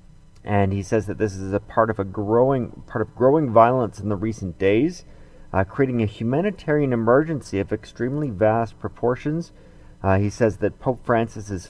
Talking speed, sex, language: 180 wpm, male, English